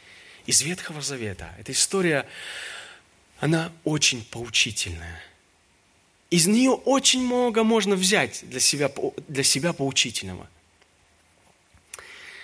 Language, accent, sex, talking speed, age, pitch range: Russian, native, male, 85 wpm, 30-49, 95-150 Hz